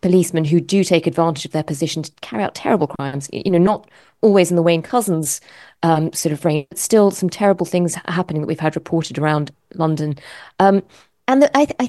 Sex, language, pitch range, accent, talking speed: female, English, 165-220 Hz, British, 205 wpm